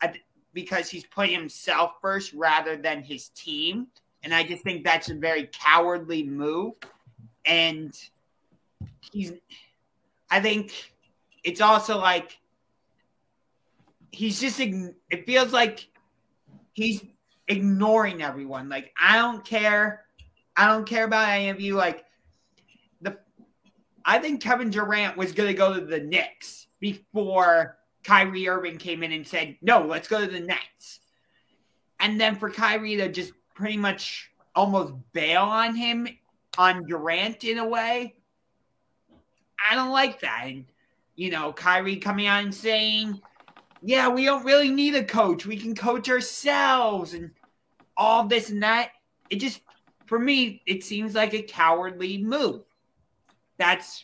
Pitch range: 175-225 Hz